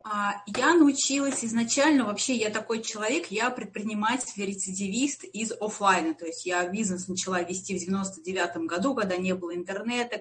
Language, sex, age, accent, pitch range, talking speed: Russian, female, 20-39, native, 190-235 Hz, 140 wpm